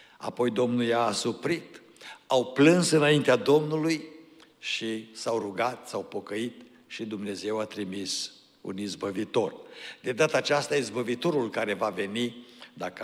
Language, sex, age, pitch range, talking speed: Romanian, male, 60-79, 110-145 Hz, 125 wpm